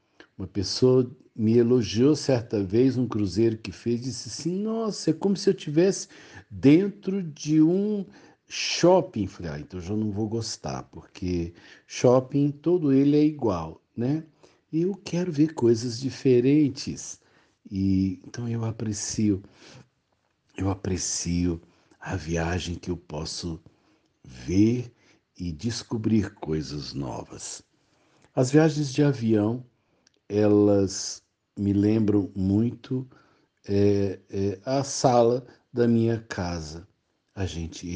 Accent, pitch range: Brazilian, 100-135 Hz